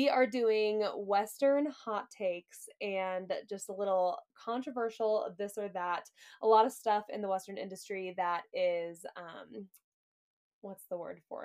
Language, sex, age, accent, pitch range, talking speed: English, female, 10-29, American, 185-230 Hz, 150 wpm